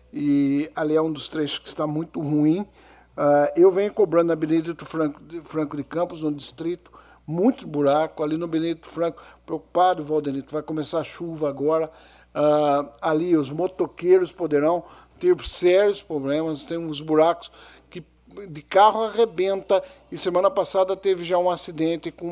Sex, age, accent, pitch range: male, 60-79, Brazilian, 145-175 Hz